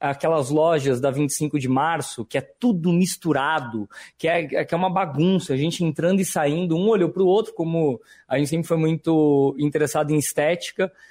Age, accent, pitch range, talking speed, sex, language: 20-39, Brazilian, 135-185 Hz, 185 wpm, male, Portuguese